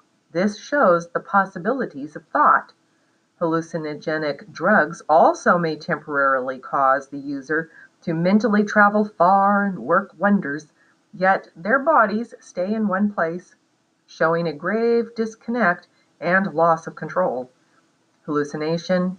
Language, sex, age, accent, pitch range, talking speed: English, female, 40-59, American, 165-225 Hz, 115 wpm